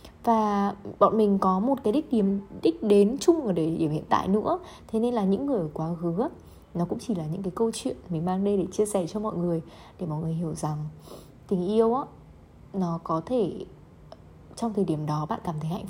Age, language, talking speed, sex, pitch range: 20-39, Vietnamese, 225 wpm, female, 175-230 Hz